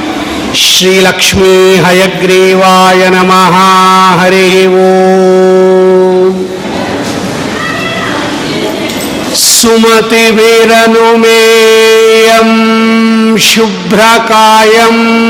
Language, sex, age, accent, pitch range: Kannada, male, 50-69, native, 225-230 Hz